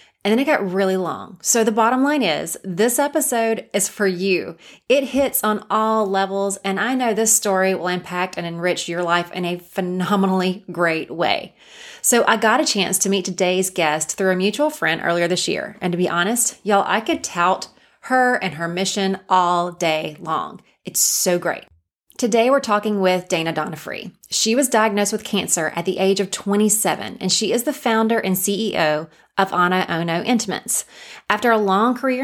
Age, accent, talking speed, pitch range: 30-49, American, 190 wpm, 185-235 Hz